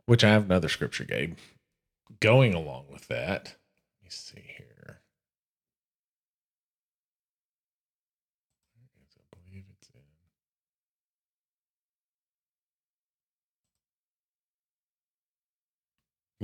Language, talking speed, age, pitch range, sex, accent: English, 65 wpm, 50-69, 90-130 Hz, male, American